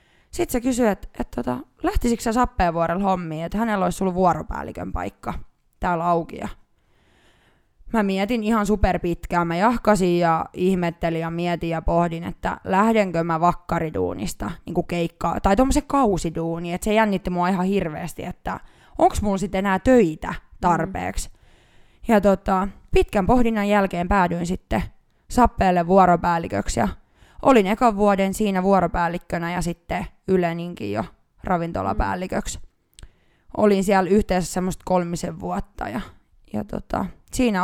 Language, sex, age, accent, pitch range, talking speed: Finnish, female, 20-39, native, 170-205 Hz, 125 wpm